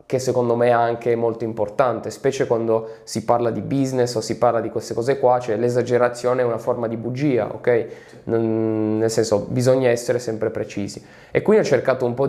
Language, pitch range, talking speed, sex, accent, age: Italian, 115-135 Hz, 195 wpm, male, native, 20-39